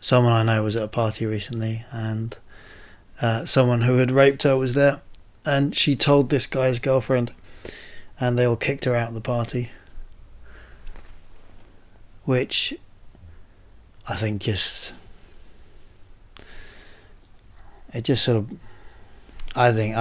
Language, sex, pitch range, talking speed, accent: English, male, 95-115 Hz, 125 wpm, British